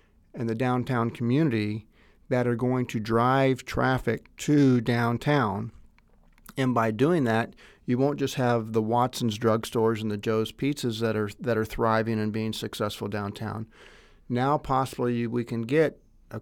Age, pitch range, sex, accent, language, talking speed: 50-69, 110-130 Hz, male, American, English, 155 wpm